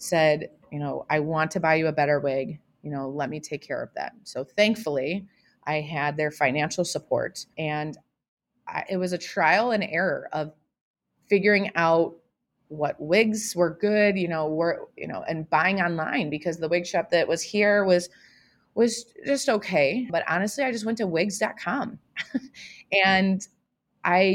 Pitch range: 155-190 Hz